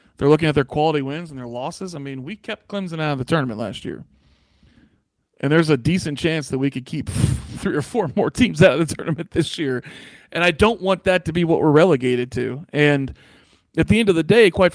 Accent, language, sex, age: American, English, male, 40-59